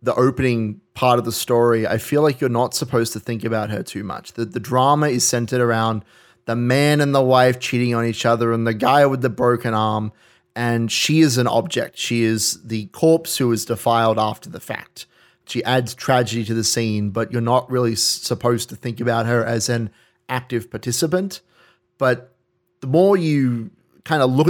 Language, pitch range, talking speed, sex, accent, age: English, 115-130 Hz, 200 wpm, male, Australian, 30-49